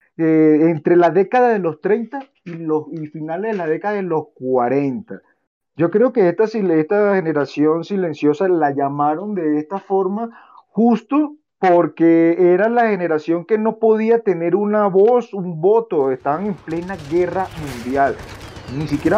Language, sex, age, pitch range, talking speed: Spanish, male, 40-59, 150-195 Hz, 150 wpm